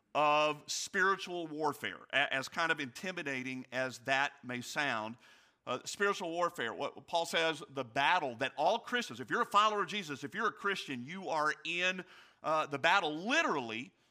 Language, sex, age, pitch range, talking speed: English, male, 50-69, 145-185 Hz, 165 wpm